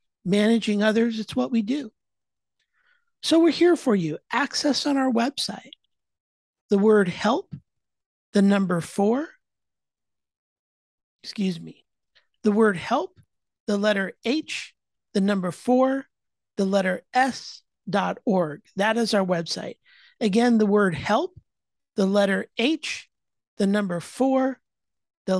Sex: male